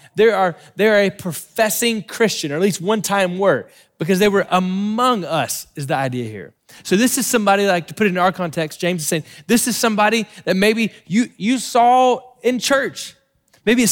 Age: 20-39